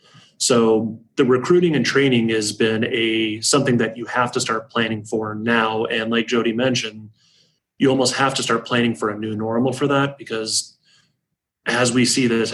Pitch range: 110-125 Hz